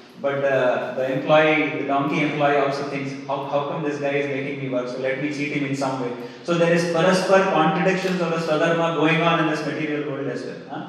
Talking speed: 235 wpm